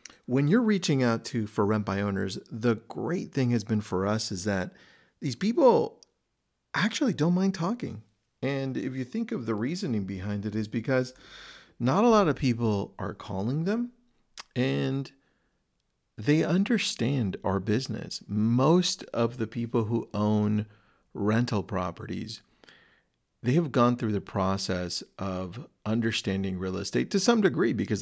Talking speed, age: 150 wpm, 40-59